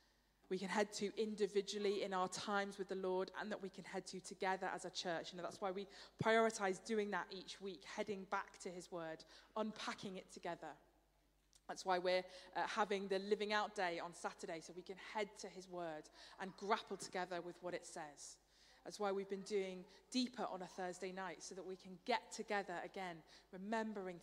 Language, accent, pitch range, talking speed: English, British, 180-215 Hz, 200 wpm